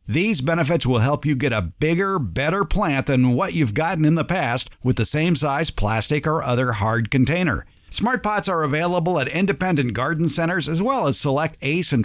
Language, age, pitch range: English, 50-69, 130-170 Hz